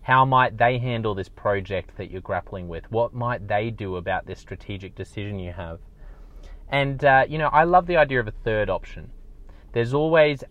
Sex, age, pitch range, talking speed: male, 20-39, 100-125 Hz, 195 wpm